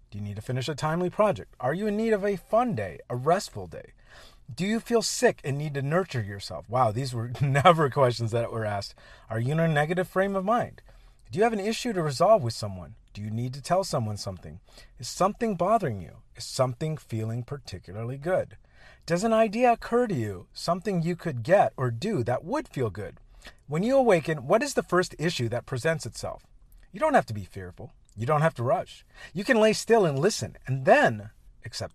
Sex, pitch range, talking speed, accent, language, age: male, 115-175 Hz, 215 wpm, American, English, 40-59